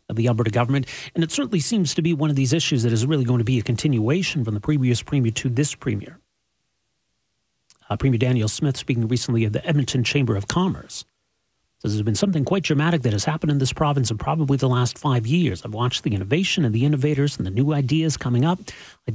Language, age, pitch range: English, 40-59, 115-155 Hz